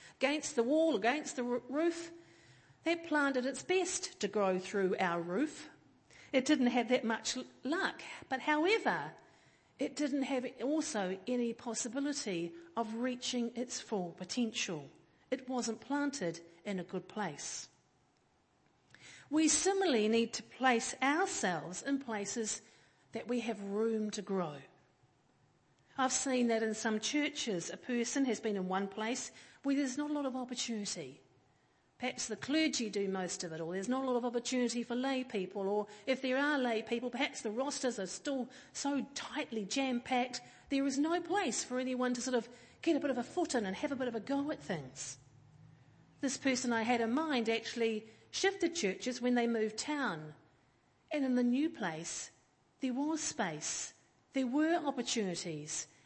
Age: 50-69